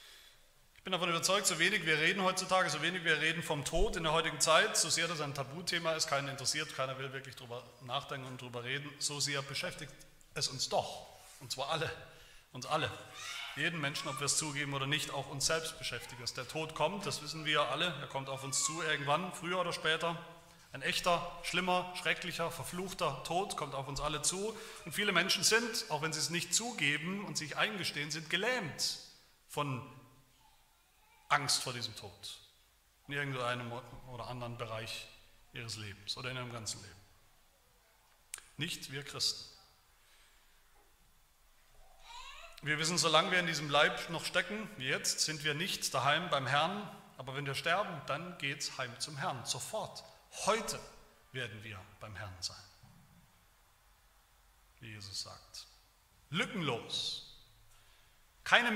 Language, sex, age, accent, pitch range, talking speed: German, male, 30-49, German, 130-170 Hz, 160 wpm